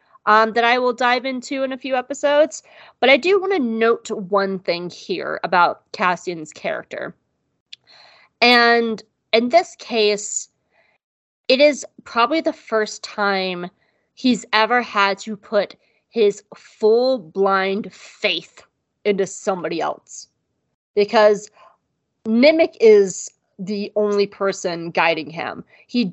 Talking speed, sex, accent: 120 wpm, female, American